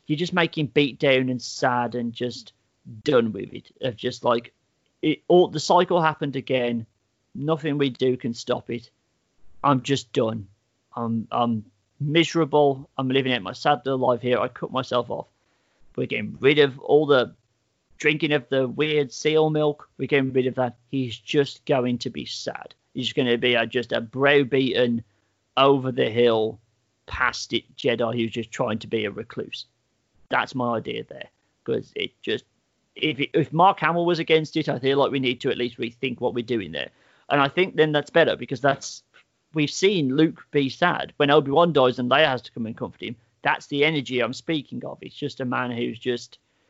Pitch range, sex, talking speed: 120-145 Hz, male, 200 wpm